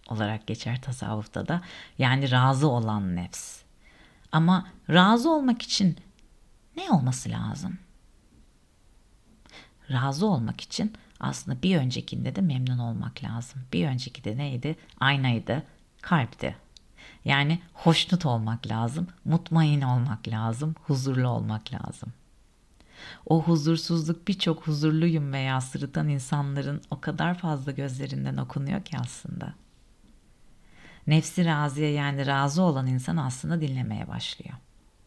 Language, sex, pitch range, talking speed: Turkish, female, 120-165 Hz, 110 wpm